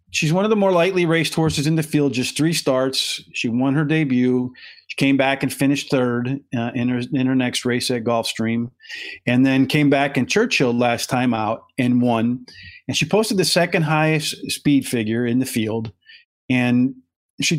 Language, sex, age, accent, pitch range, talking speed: English, male, 40-59, American, 125-155 Hz, 195 wpm